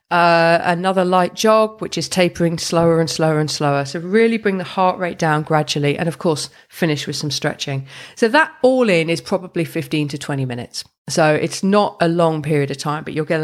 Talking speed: 215 wpm